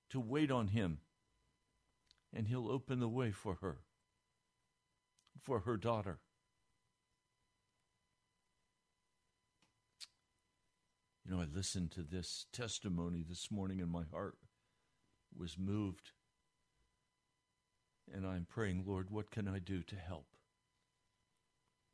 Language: English